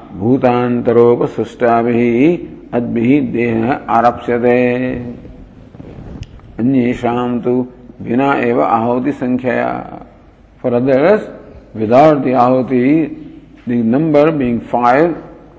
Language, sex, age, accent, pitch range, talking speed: English, male, 50-69, Indian, 120-140 Hz, 75 wpm